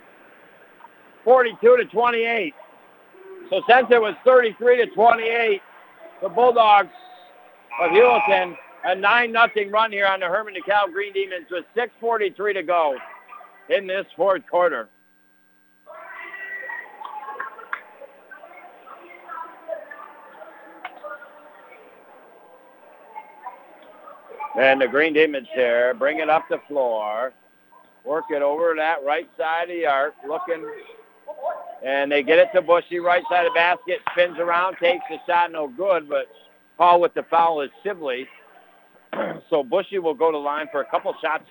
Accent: American